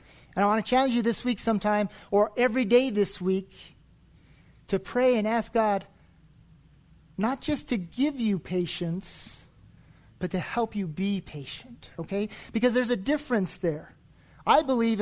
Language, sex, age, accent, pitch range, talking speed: English, male, 40-59, American, 170-225 Hz, 155 wpm